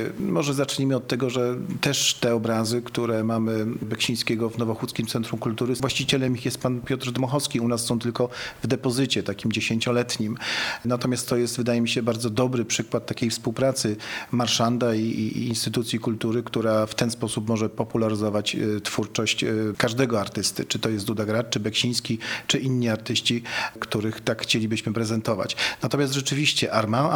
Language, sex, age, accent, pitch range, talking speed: Polish, male, 40-59, native, 115-125 Hz, 155 wpm